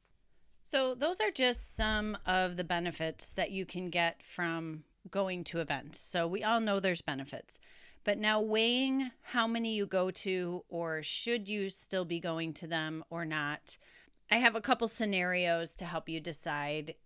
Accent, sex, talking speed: American, female, 170 wpm